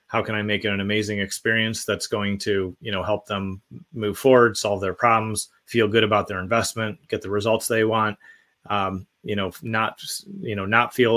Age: 30-49